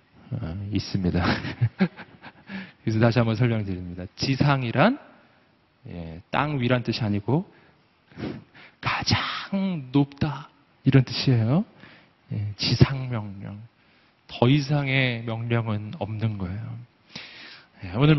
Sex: male